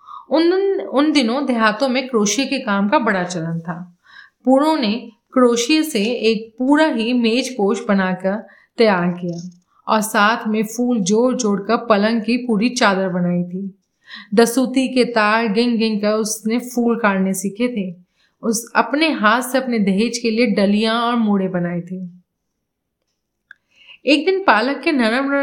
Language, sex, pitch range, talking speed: Hindi, female, 200-245 Hz, 155 wpm